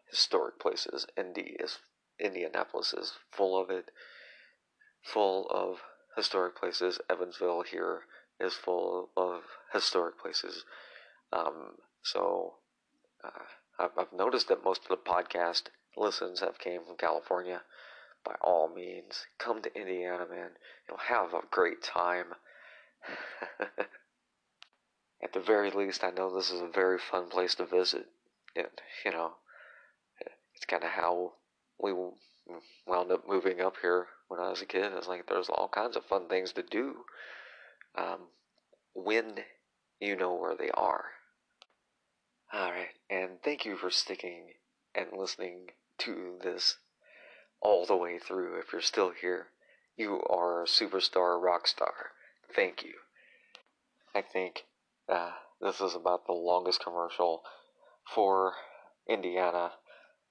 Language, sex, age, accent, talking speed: English, male, 40-59, American, 135 wpm